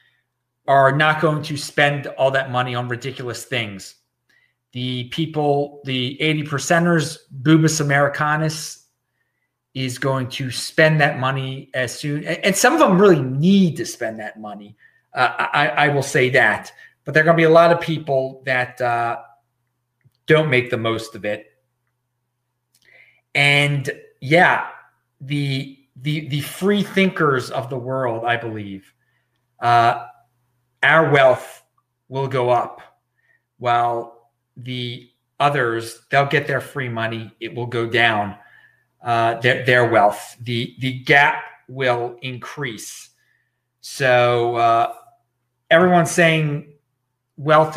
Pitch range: 120-150 Hz